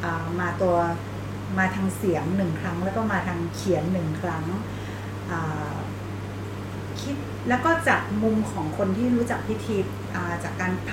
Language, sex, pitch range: Thai, female, 95-115 Hz